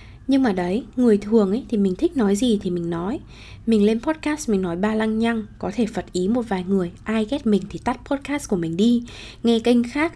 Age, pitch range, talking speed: 20-39, 185-240 Hz, 240 wpm